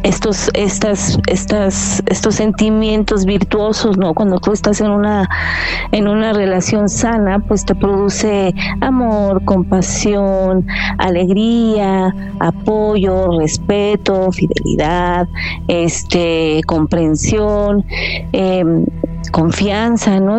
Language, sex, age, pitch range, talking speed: Spanish, female, 30-49, 185-220 Hz, 90 wpm